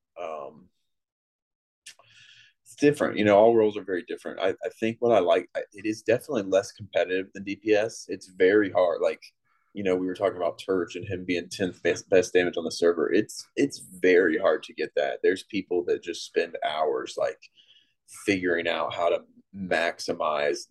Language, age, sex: English, 20-39, male